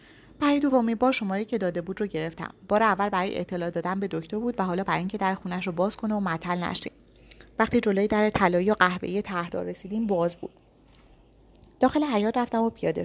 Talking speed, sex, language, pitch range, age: 195 wpm, female, Persian, 185-230 Hz, 30-49